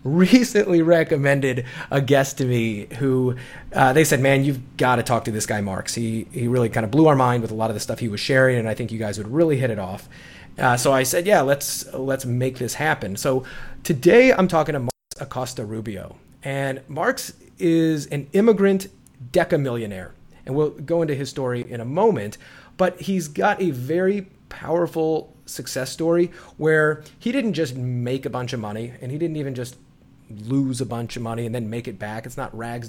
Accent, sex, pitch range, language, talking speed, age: American, male, 125-155 Hz, English, 210 wpm, 30-49